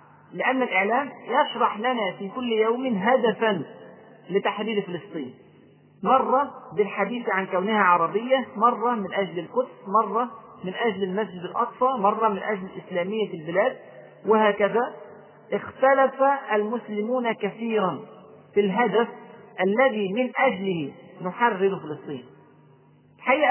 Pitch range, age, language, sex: 185-240 Hz, 40-59, Arabic, male